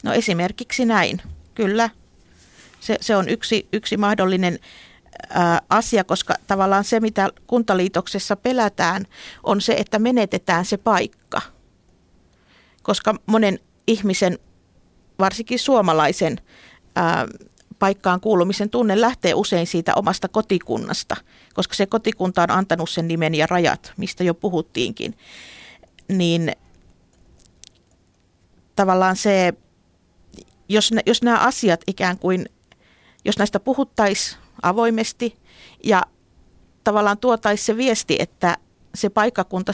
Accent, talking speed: native, 105 wpm